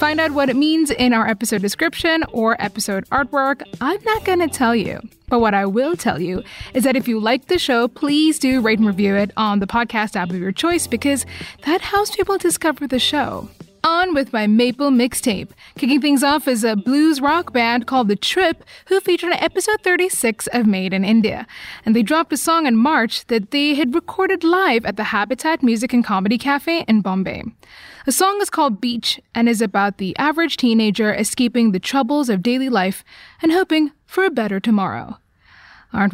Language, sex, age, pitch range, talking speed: English, female, 20-39, 225-315 Hz, 200 wpm